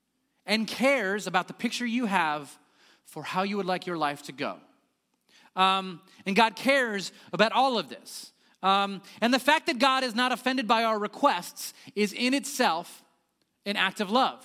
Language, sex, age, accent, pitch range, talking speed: English, male, 30-49, American, 175-230 Hz, 180 wpm